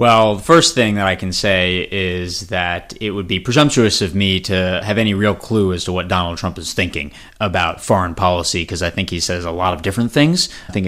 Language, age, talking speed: English, 30-49, 235 wpm